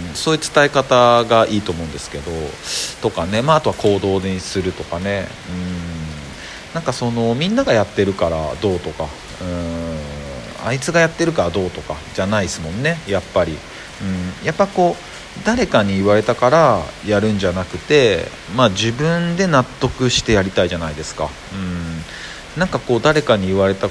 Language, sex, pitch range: Japanese, male, 90-130 Hz